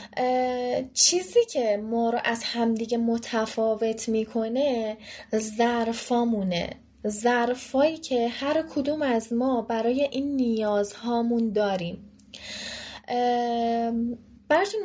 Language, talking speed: Persian, 80 wpm